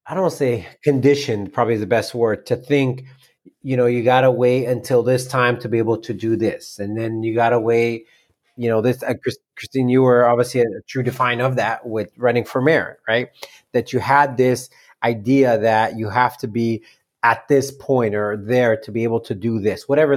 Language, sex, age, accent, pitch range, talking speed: English, male, 30-49, American, 110-130 Hz, 205 wpm